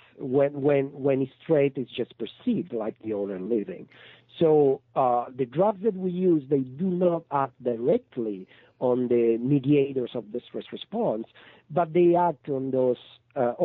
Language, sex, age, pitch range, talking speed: English, male, 50-69, 120-155 Hz, 165 wpm